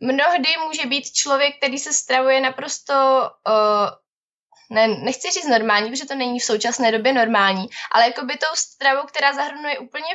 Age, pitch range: 20-39, 225-270 Hz